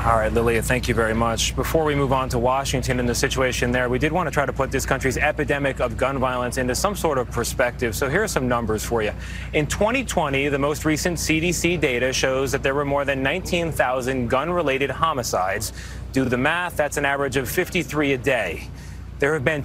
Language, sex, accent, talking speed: English, male, American, 220 wpm